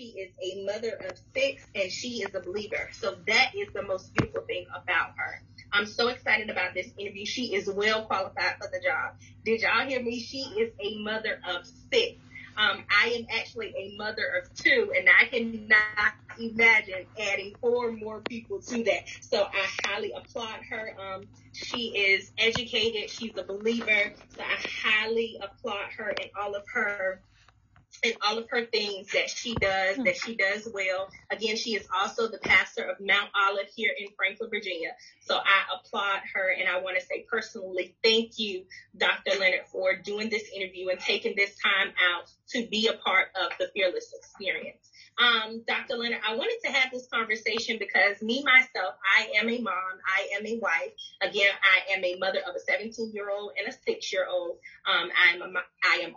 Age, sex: 30-49, female